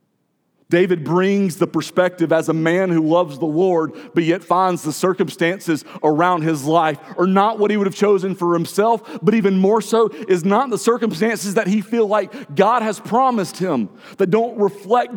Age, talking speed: 40-59, 185 wpm